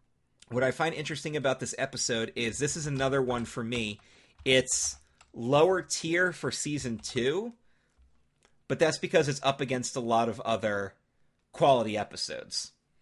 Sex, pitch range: male, 110-140 Hz